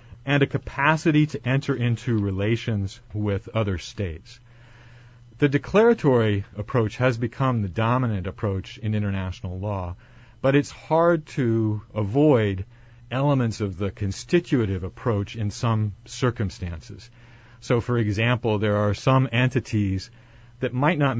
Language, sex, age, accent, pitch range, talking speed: English, male, 40-59, American, 100-125 Hz, 125 wpm